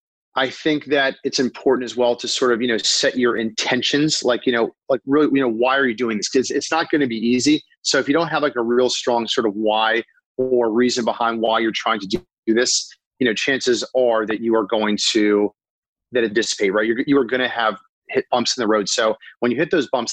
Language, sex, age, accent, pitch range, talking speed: English, male, 30-49, American, 115-135 Hz, 250 wpm